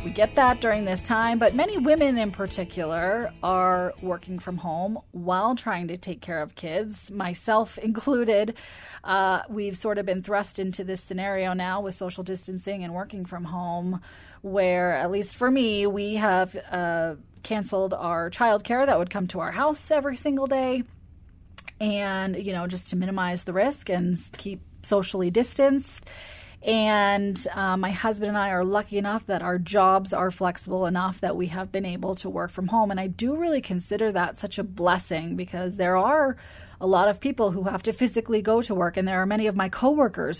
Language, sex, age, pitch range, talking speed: English, female, 20-39, 180-215 Hz, 190 wpm